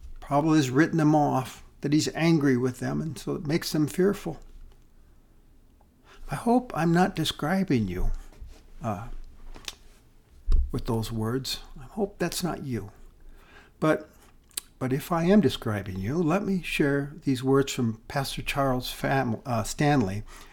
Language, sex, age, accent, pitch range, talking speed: English, male, 60-79, American, 130-195 Hz, 140 wpm